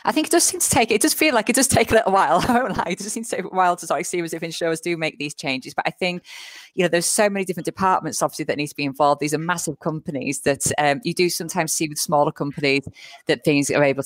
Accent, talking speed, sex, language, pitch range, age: British, 300 wpm, female, English, 145-180 Hz, 20-39